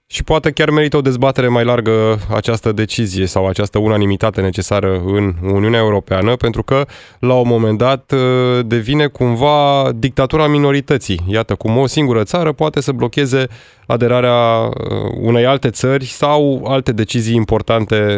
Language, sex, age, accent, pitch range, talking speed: Romanian, male, 20-39, native, 105-140 Hz, 140 wpm